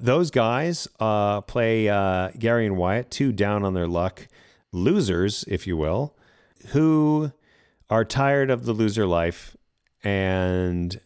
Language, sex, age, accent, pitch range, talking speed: English, male, 40-59, American, 85-120 Hz, 120 wpm